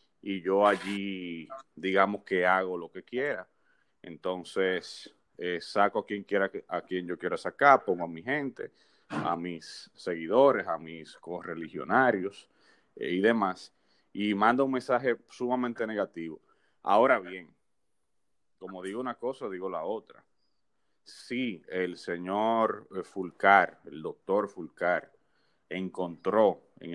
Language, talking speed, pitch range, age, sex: Spanish, 125 wpm, 90-110 Hz, 30-49, male